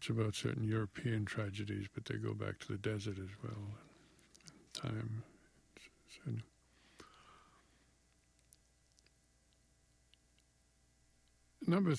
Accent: American